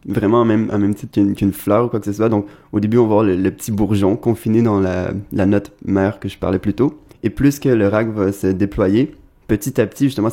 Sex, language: male, French